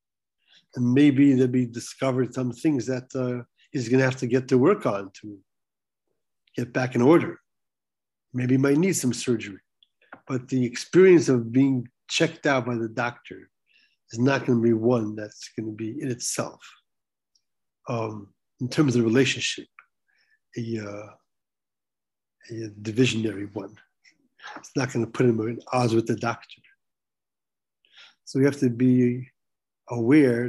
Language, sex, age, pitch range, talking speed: English, male, 60-79, 115-135 Hz, 155 wpm